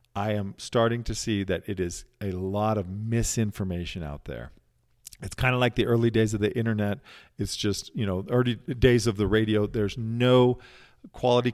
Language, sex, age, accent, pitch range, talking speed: English, male, 40-59, American, 100-125 Hz, 185 wpm